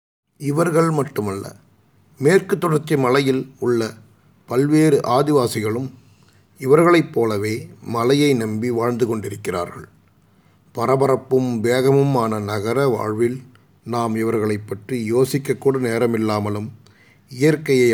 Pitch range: 110-135 Hz